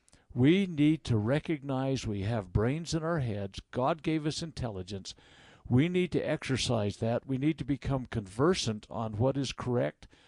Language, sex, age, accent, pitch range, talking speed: English, male, 60-79, American, 115-170 Hz, 165 wpm